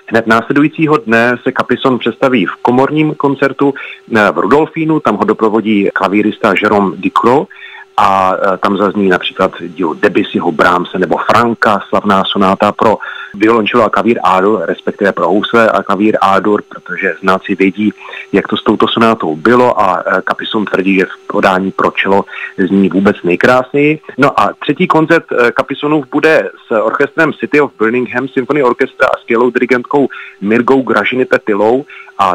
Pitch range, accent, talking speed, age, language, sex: 100-135 Hz, native, 145 wpm, 40-59, Czech, male